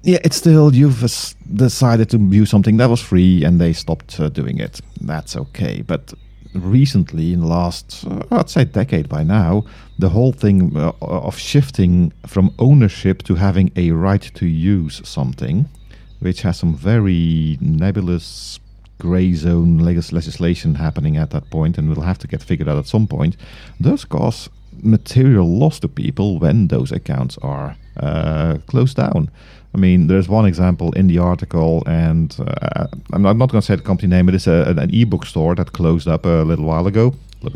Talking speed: 180 wpm